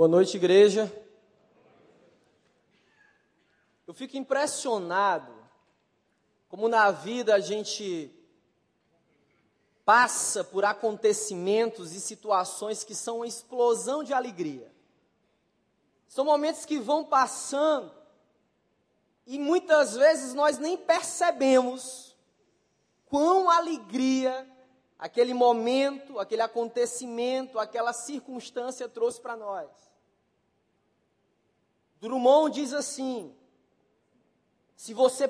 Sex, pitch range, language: male, 225-285 Hz, Portuguese